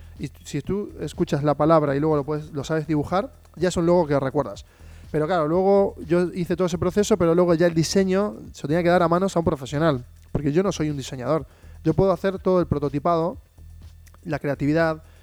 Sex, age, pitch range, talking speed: male, 20-39, 140-180 Hz, 215 wpm